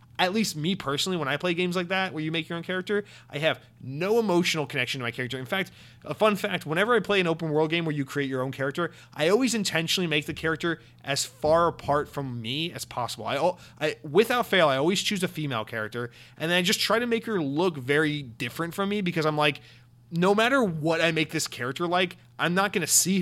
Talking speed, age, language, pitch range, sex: 240 wpm, 30-49, English, 130-175 Hz, male